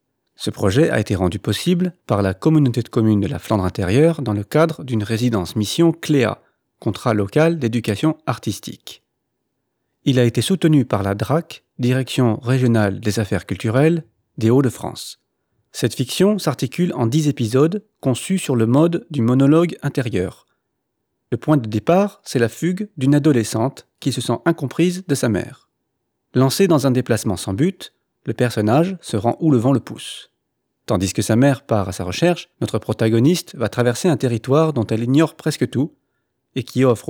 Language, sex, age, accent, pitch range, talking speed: French, male, 40-59, French, 110-150 Hz, 170 wpm